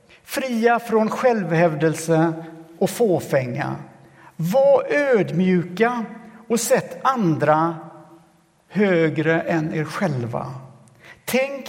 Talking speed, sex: 75 wpm, male